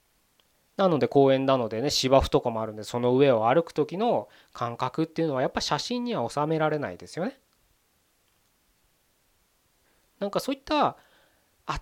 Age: 20-39